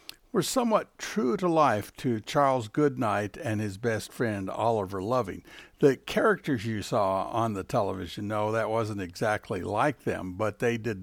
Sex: male